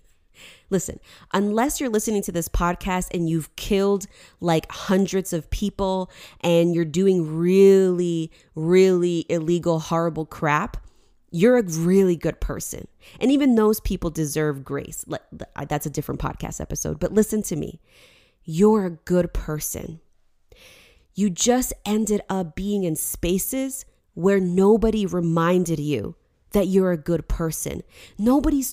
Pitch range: 155-200 Hz